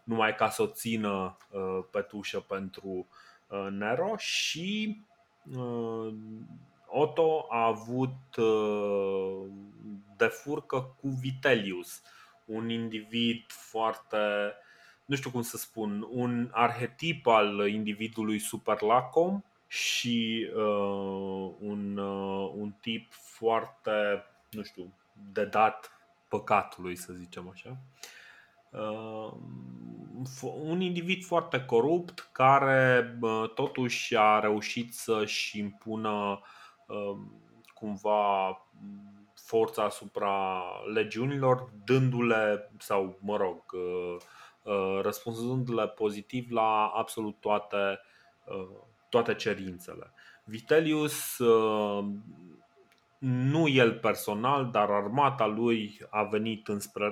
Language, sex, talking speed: Romanian, male, 80 wpm